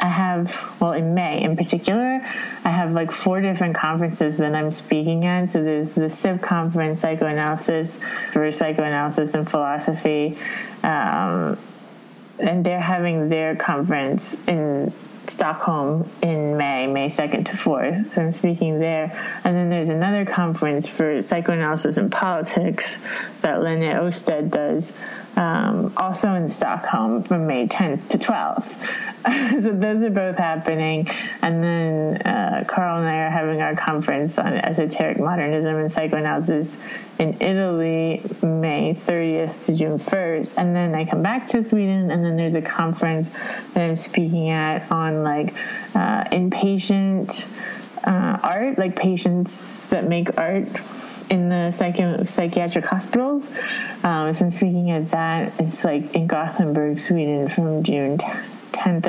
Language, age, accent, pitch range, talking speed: English, 20-39, American, 160-195 Hz, 140 wpm